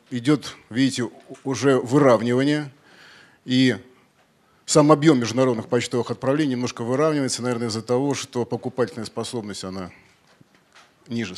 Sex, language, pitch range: male, Russian, 115-140 Hz